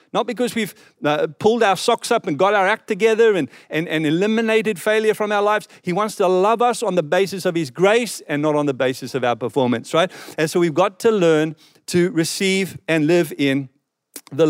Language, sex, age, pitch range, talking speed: English, male, 50-69, 155-205 Hz, 220 wpm